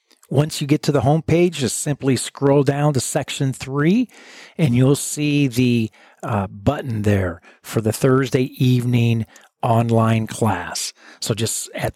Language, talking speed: English, 145 wpm